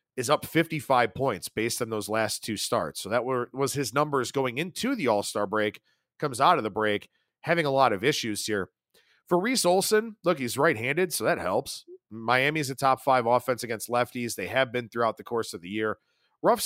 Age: 40-59